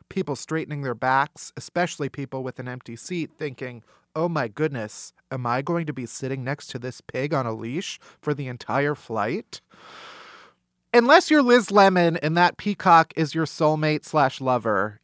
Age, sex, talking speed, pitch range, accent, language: 30-49, male, 170 wpm, 135-190 Hz, American, English